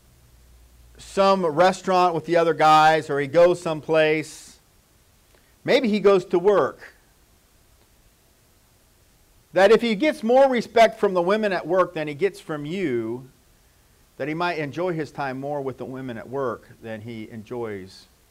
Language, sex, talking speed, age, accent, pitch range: English, male, 150 wpm, 50-69, American, 125-175 Hz